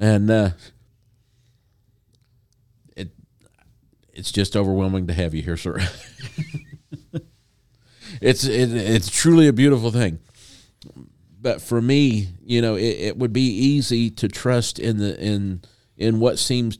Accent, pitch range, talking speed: American, 90-115 Hz, 130 wpm